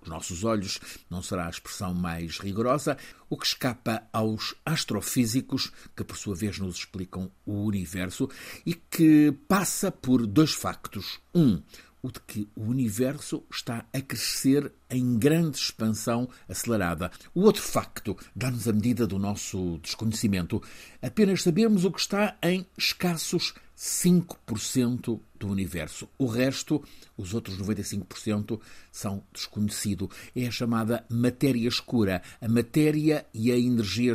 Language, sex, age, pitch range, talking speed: Portuguese, male, 60-79, 100-130 Hz, 135 wpm